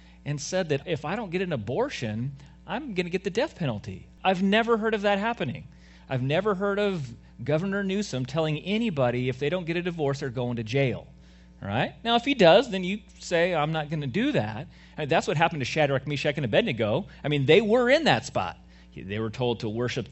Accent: American